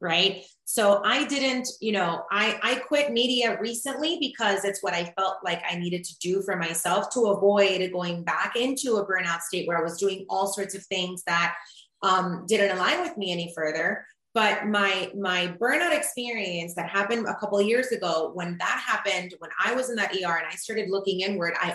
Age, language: 30-49, English